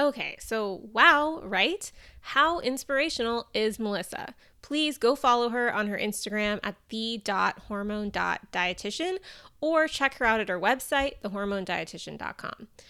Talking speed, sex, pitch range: 115 wpm, female, 205-265 Hz